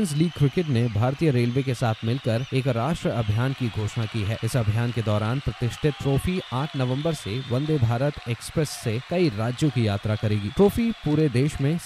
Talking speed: 180 wpm